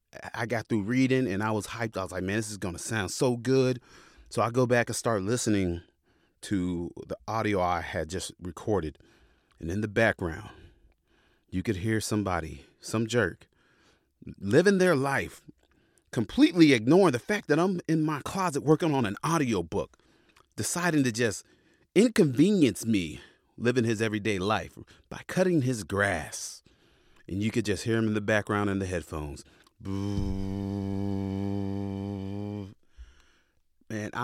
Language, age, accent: English, 30-49, American